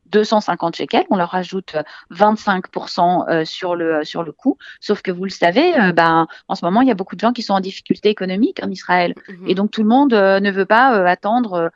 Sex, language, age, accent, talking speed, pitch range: female, French, 40-59, French, 215 wpm, 180-220 Hz